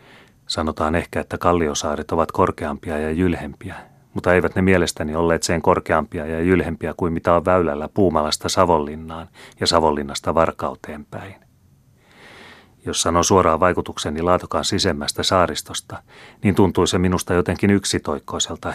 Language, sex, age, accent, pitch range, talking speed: Finnish, male, 30-49, native, 75-90 Hz, 130 wpm